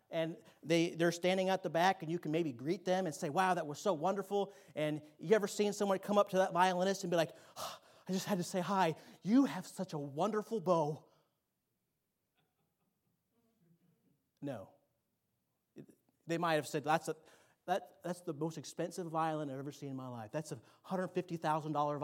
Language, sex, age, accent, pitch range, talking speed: English, male, 30-49, American, 145-185 Hz, 175 wpm